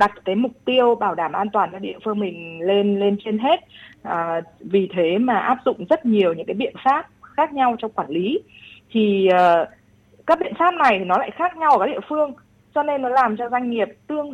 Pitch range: 175-235 Hz